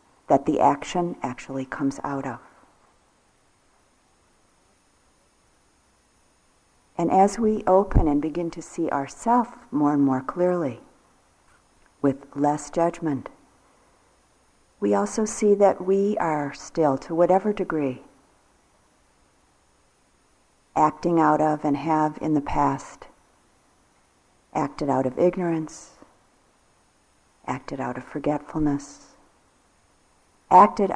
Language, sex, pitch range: English, female, 145-180 Hz